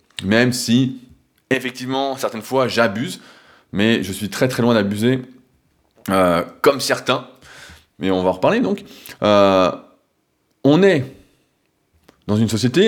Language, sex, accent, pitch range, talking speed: French, male, French, 110-135 Hz, 130 wpm